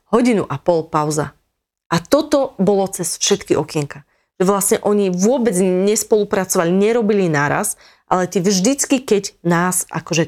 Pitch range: 160-200 Hz